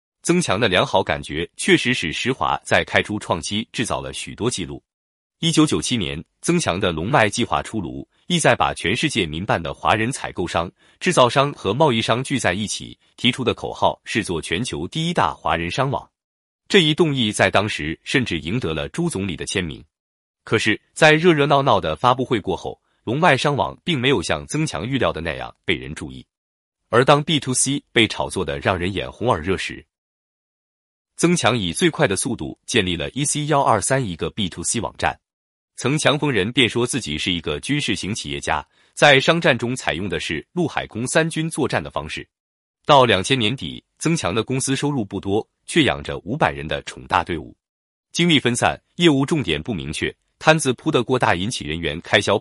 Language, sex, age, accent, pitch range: Chinese, male, 30-49, native, 100-155 Hz